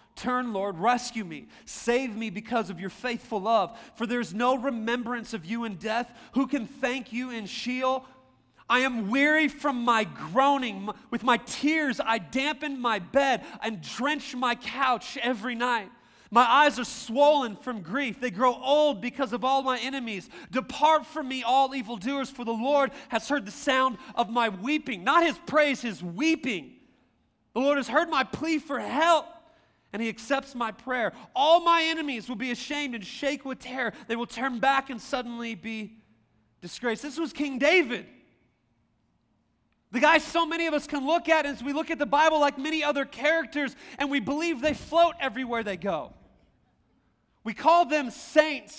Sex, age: male, 30-49